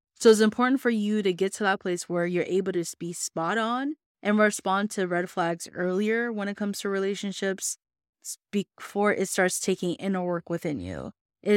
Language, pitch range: English, 185-220 Hz